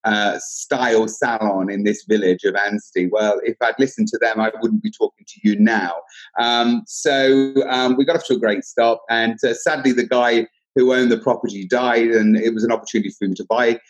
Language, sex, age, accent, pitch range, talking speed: English, male, 30-49, British, 110-135 Hz, 215 wpm